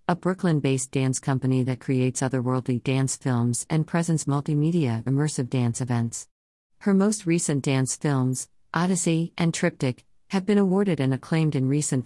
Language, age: English, 50-69